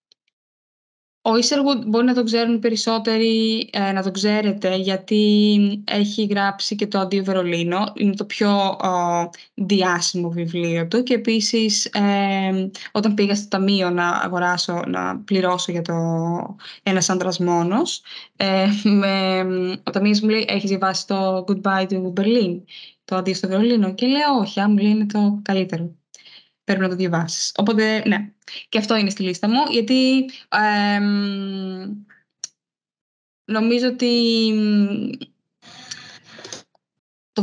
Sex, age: female, 10-29